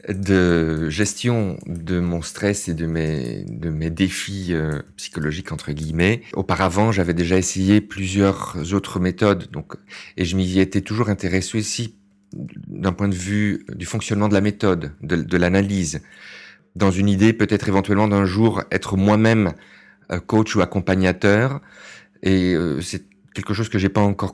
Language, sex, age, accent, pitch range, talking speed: French, male, 40-59, French, 90-110 Hz, 160 wpm